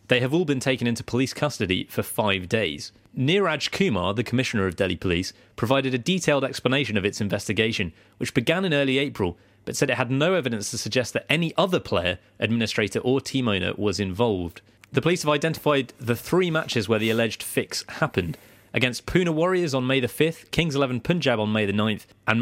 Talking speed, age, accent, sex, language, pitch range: 200 wpm, 30-49, British, male, English, 100-135 Hz